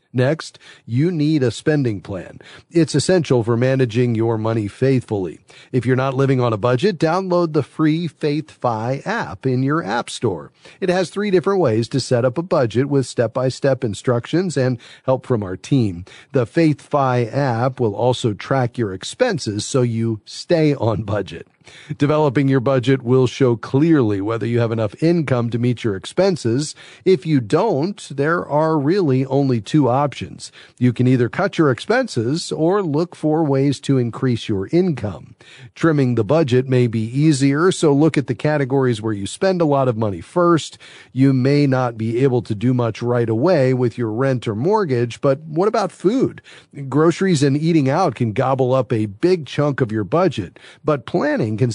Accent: American